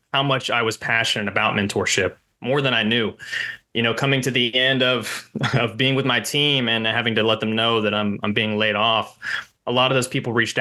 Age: 20-39